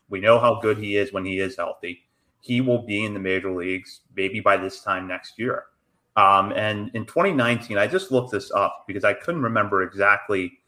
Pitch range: 95-120 Hz